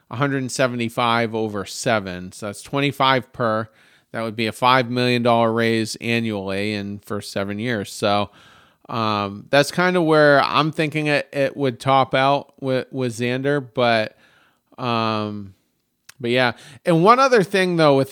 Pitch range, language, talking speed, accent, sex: 115-145 Hz, English, 150 wpm, American, male